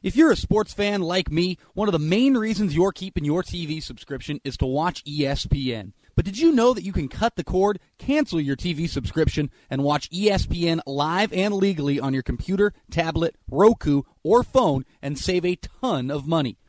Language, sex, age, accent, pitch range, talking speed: English, male, 30-49, American, 145-205 Hz, 195 wpm